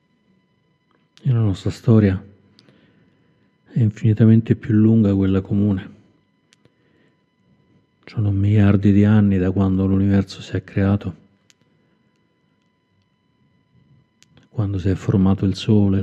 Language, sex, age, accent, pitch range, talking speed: Italian, male, 40-59, native, 95-110 Hz, 95 wpm